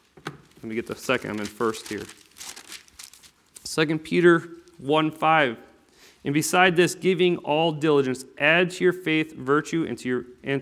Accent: American